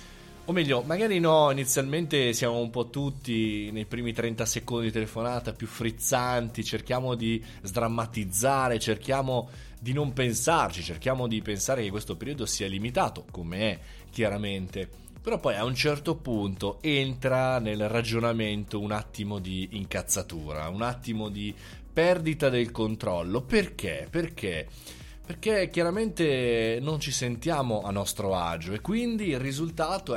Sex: male